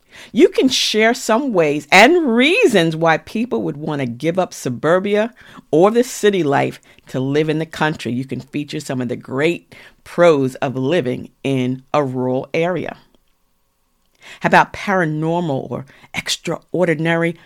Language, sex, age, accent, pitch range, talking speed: English, female, 50-69, American, 135-180 Hz, 150 wpm